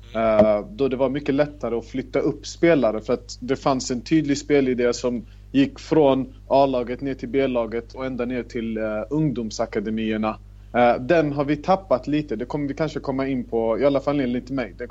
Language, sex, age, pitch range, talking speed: Swedish, male, 30-49, 110-140 Hz, 195 wpm